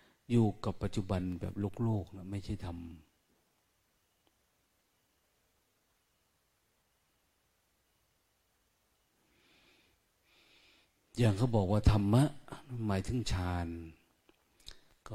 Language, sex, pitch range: Thai, male, 90-110 Hz